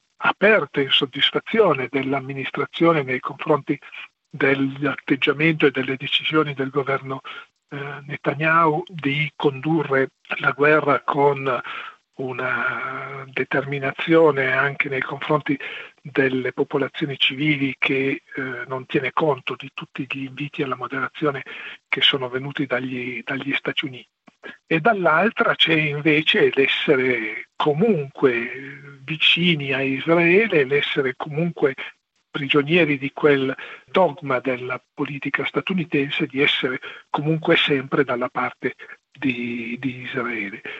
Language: Italian